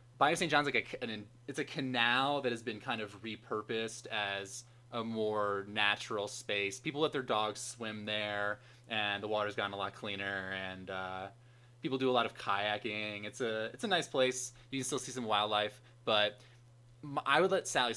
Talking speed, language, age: 190 wpm, English, 20-39